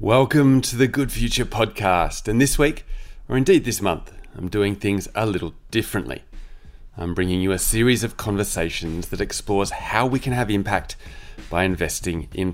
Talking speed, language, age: 170 wpm, English, 30-49